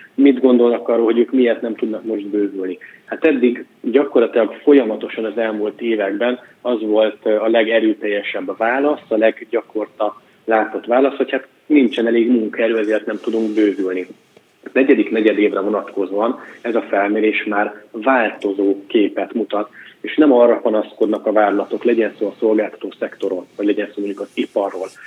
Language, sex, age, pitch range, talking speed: Hungarian, male, 30-49, 105-120 Hz, 155 wpm